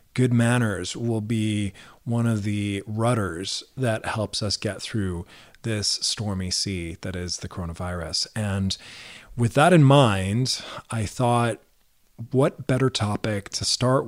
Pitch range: 100-120 Hz